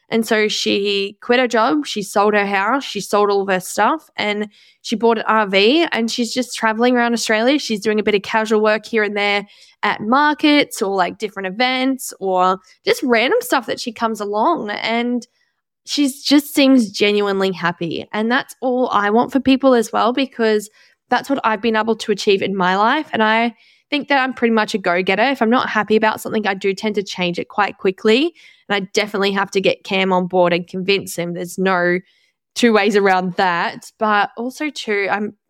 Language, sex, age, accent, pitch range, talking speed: English, female, 10-29, Australian, 195-245 Hz, 205 wpm